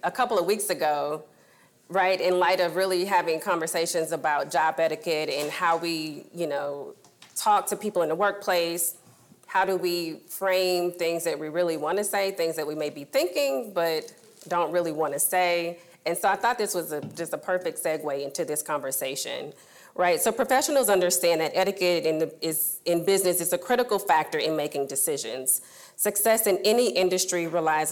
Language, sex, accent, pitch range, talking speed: English, female, American, 165-195 Hz, 185 wpm